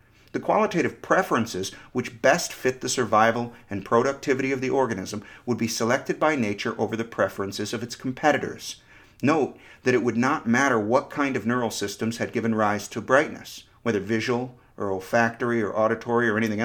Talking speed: 175 wpm